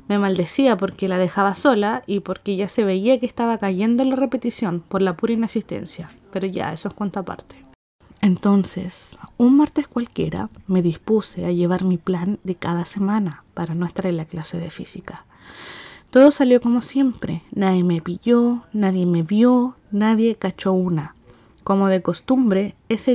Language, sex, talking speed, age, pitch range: Spanish, female, 170 wpm, 30-49, 185-225 Hz